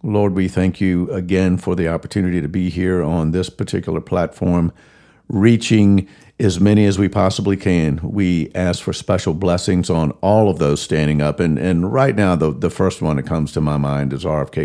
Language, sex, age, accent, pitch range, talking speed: English, male, 50-69, American, 75-95 Hz, 195 wpm